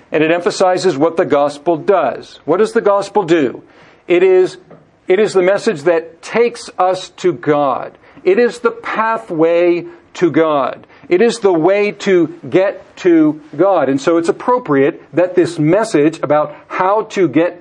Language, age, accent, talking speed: English, 50-69, American, 165 wpm